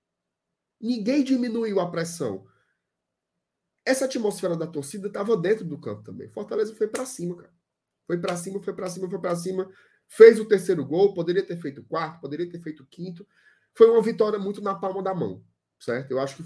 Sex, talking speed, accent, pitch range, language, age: male, 195 wpm, Brazilian, 160-200 Hz, Portuguese, 20-39